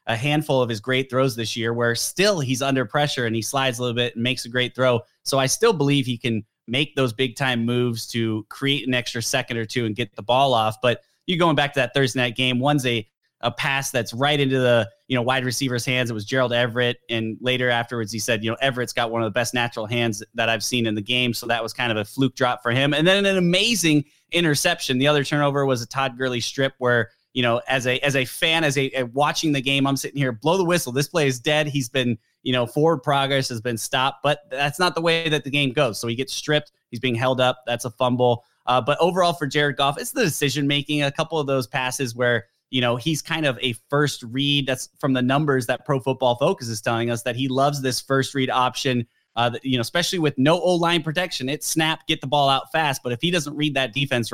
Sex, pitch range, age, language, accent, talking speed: male, 120-145 Hz, 20-39, English, American, 255 wpm